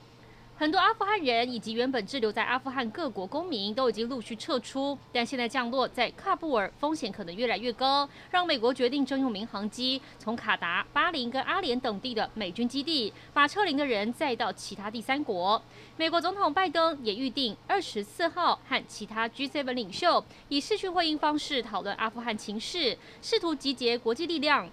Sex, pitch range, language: female, 225-305 Hz, Chinese